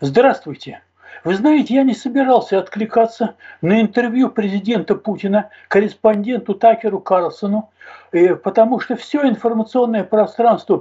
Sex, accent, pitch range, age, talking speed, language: male, native, 195-255 Hz, 60-79, 105 wpm, Russian